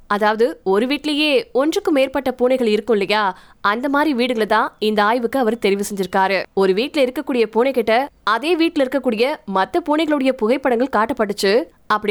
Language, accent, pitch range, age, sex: Tamil, native, 215-270 Hz, 20-39, female